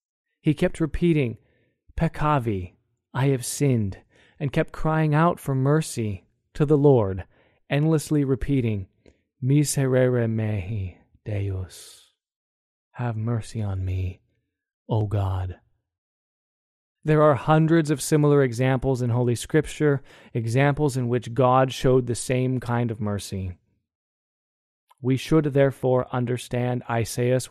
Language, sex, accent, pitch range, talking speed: English, male, American, 115-145 Hz, 110 wpm